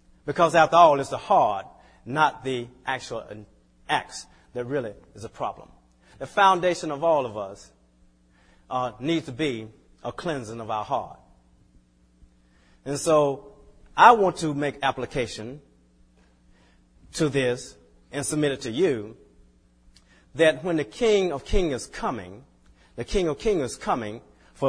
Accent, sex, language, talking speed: American, male, English, 145 wpm